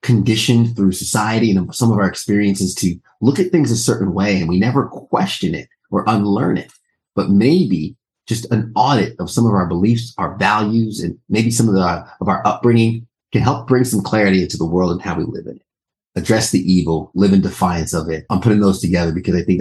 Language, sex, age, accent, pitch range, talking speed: English, male, 30-49, American, 90-110 Hz, 220 wpm